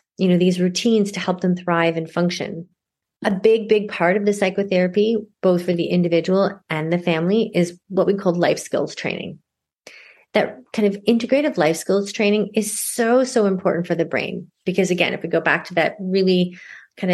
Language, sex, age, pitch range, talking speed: English, female, 30-49, 175-210 Hz, 195 wpm